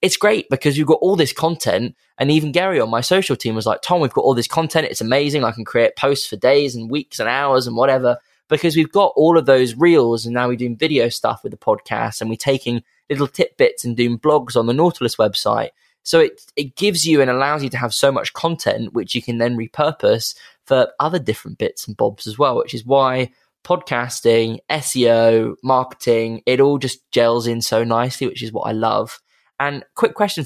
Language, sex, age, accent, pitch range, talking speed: English, male, 20-39, British, 120-160 Hz, 225 wpm